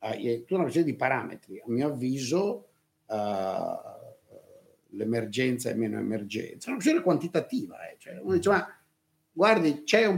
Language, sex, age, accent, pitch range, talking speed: Italian, male, 50-69, native, 115-165 Hz, 160 wpm